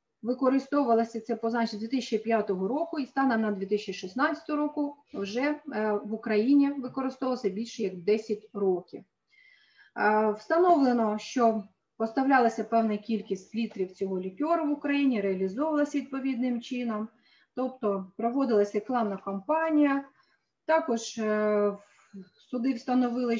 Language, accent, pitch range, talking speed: Ukrainian, native, 210-265 Hz, 95 wpm